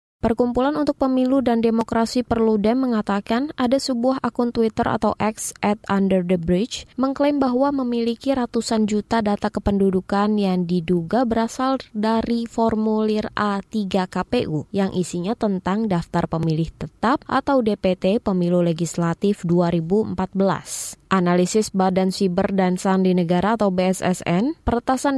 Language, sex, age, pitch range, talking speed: Indonesian, female, 20-39, 185-245 Hz, 115 wpm